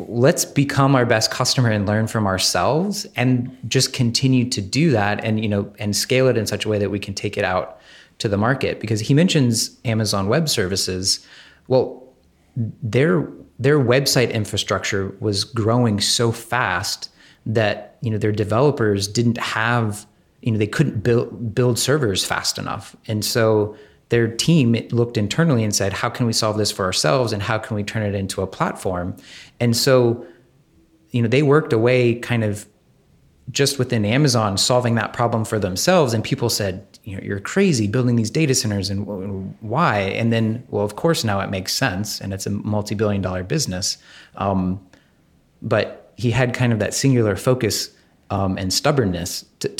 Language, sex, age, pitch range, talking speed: English, male, 30-49, 100-125 Hz, 175 wpm